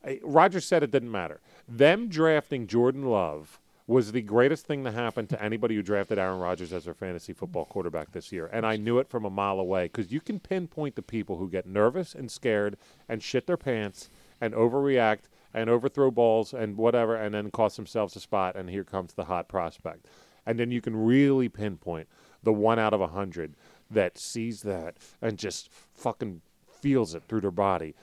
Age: 40-59